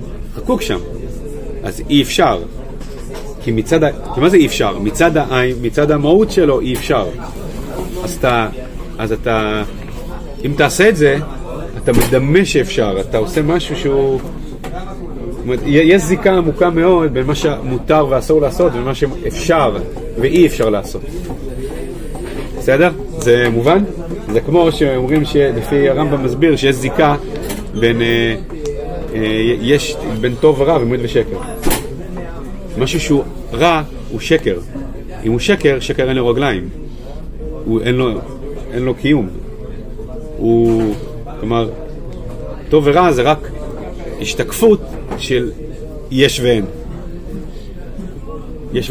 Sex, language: male, Hebrew